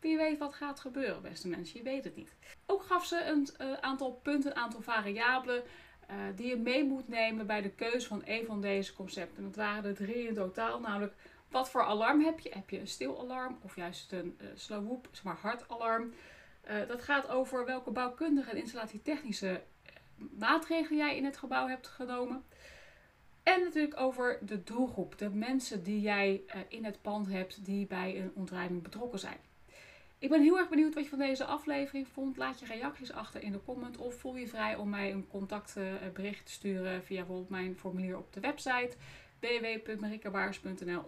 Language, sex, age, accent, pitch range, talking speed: Dutch, female, 30-49, Dutch, 195-260 Hz, 185 wpm